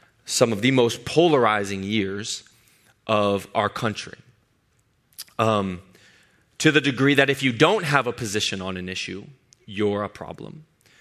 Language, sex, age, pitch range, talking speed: English, male, 30-49, 105-140 Hz, 140 wpm